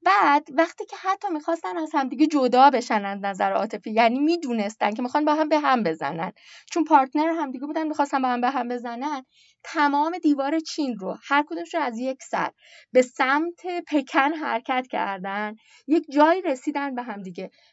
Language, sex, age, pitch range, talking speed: Persian, female, 20-39, 225-300 Hz, 175 wpm